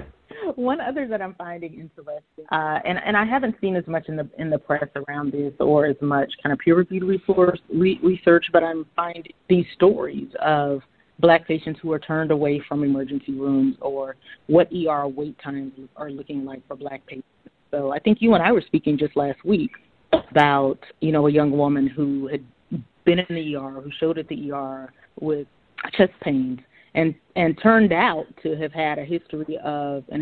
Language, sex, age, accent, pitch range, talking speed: English, female, 30-49, American, 145-170 Hz, 195 wpm